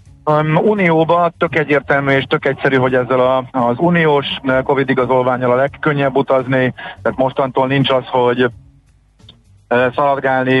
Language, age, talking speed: Hungarian, 50-69, 125 wpm